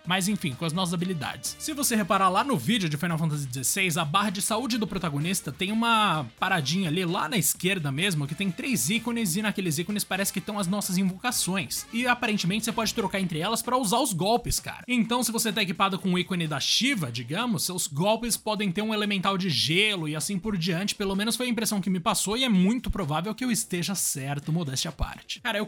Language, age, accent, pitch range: Portuguese, 20-39, Brazilian, 165-215 Hz